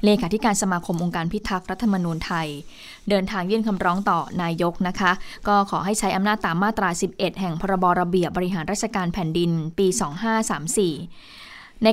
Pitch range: 180-220 Hz